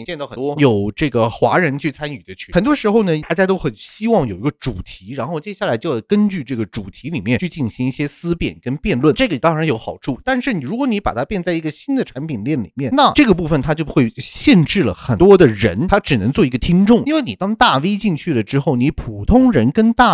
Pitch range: 120-205 Hz